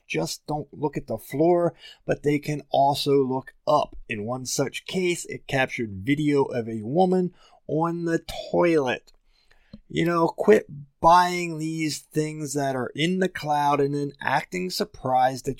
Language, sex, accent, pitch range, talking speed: English, male, American, 130-155 Hz, 160 wpm